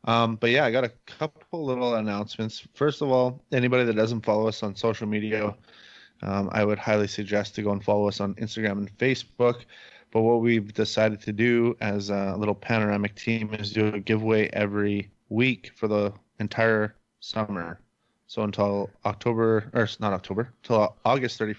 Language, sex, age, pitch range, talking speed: English, male, 20-39, 105-120 Hz, 175 wpm